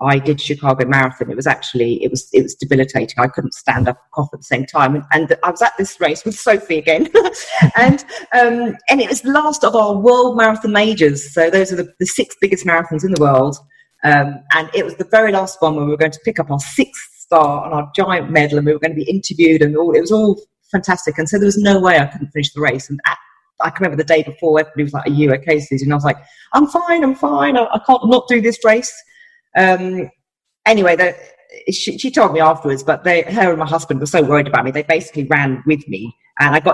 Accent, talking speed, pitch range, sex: British, 260 wpm, 145-205 Hz, female